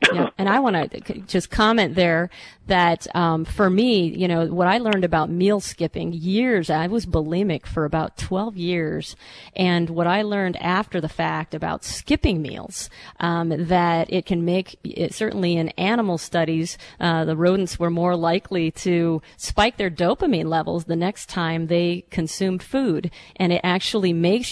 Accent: American